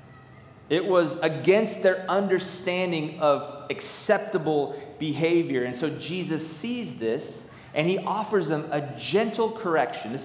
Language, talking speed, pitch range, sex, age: English, 125 wpm, 140-190 Hz, male, 30-49